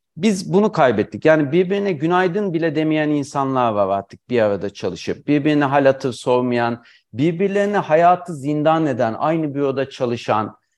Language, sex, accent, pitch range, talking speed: Turkish, male, native, 135-180 Hz, 140 wpm